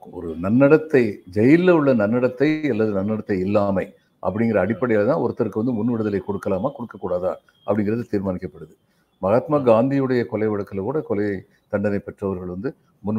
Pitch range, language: 95-125 Hz, Tamil